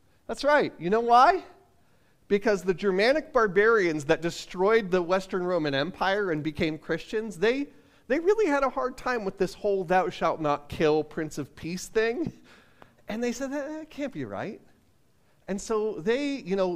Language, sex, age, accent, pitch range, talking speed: English, male, 40-59, American, 165-245 Hz, 175 wpm